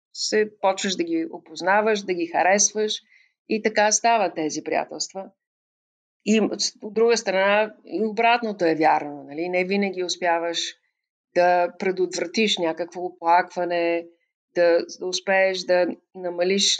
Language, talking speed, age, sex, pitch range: Bulgarian, 120 wpm, 50-69, female, 170-200 Hz